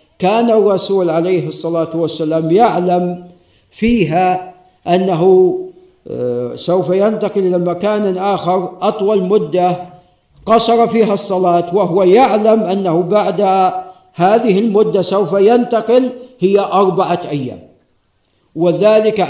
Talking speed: 95 wpm